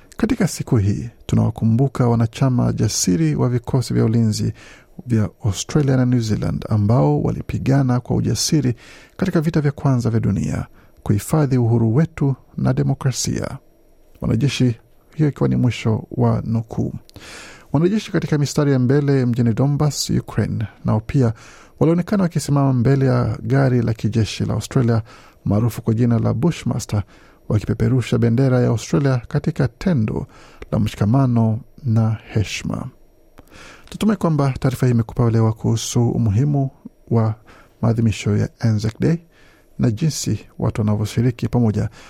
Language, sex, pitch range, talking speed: Swahili, male, 110-135 Hz, 125 wpm